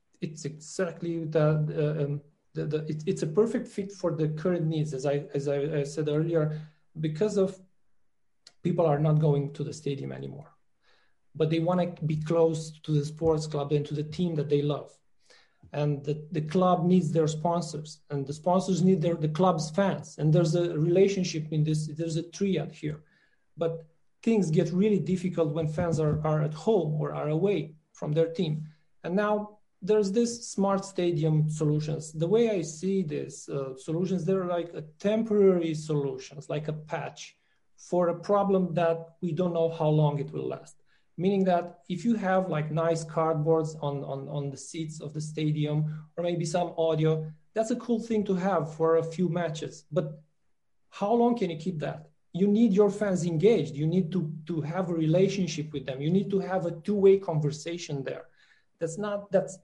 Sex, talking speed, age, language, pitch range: male, 185 wpm, 40-59, English, 155-185 Hz